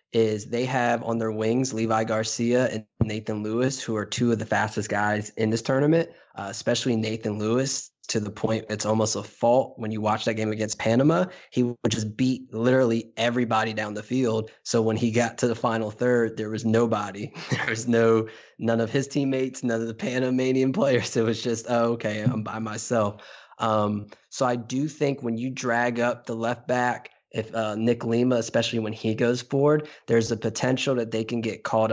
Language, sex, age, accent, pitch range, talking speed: English, male, 20-39, American, 110-120 Hz, 200 wpm